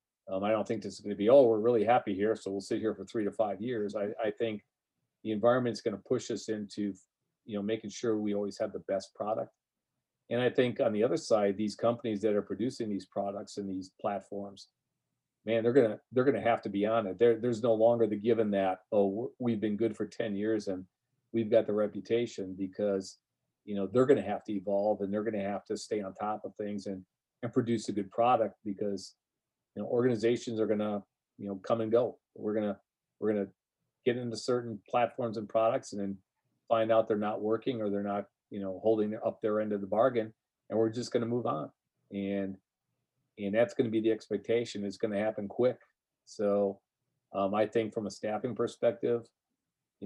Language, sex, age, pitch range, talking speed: English, male, 40-59, 100-115 Hz, 225 wpm